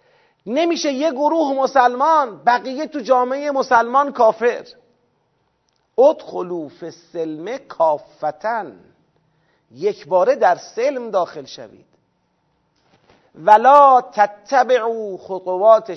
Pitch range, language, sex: 205-280 Hz, Persian, male